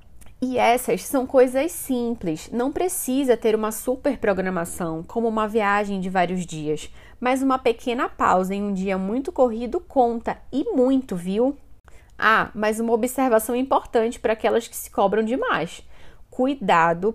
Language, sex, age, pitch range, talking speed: Portuguese, female, 20-39, 205-255 Hz, 145 wpm